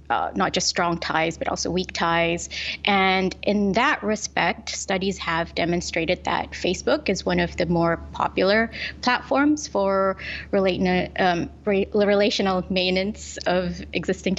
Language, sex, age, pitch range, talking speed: English, female, 20-39, 175-205 Hz, 130 wpm